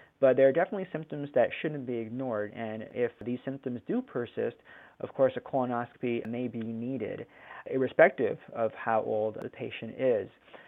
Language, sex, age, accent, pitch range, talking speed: English, male, 30-49, American, 120-145 Hz, 165 wpm